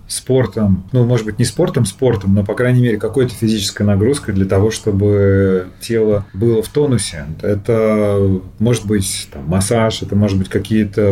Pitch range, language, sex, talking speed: 100-125 Hz, Russian, male, 160 wpm